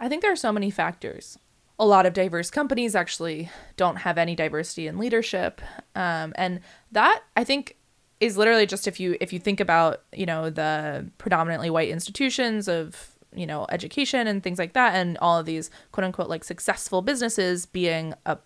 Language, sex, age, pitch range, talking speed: English, female, 20-39, 170-210 Hz, 190 wpm